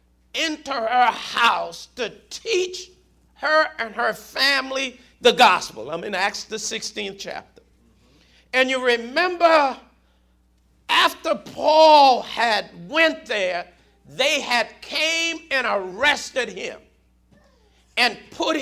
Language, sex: English, male